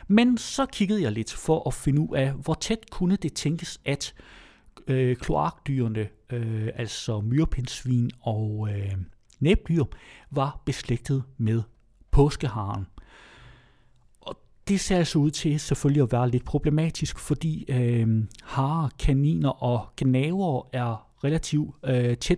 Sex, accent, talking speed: male, native, 125 wpm